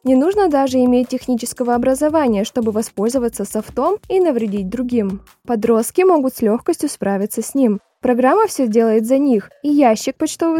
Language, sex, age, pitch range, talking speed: Russian, female, 20-39, 215-285 Hz, 155 wpm